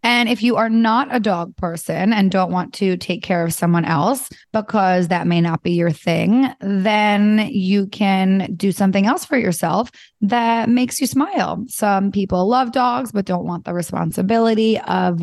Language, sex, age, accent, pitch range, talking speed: English, female, 20-39, American, 185-225 Hz, 180 wpm